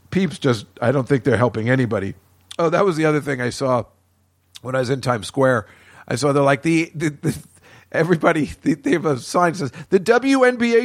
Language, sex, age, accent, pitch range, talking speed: English, male, 50-69, American, 135-180 Hz, 205 wpm